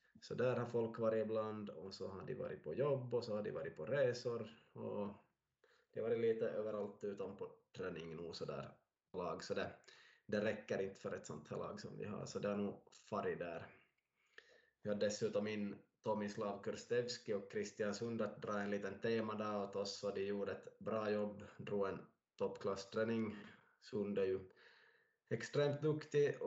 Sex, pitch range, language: male, 105-155 Hz, Swedish